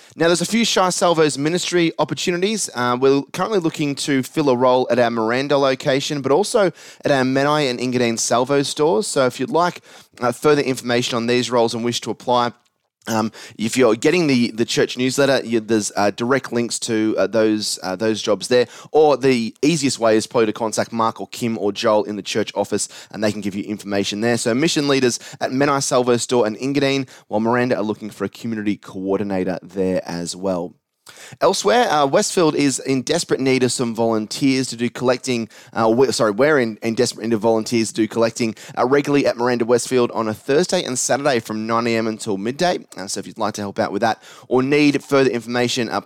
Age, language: 20-39, English